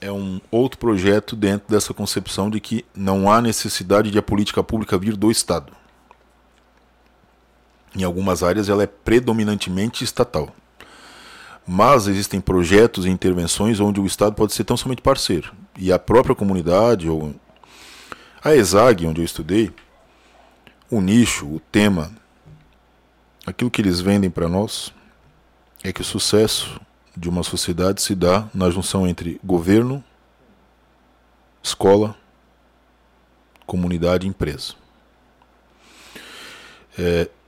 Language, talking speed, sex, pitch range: Portuguese, 125 wpm, male, 90-110 Hz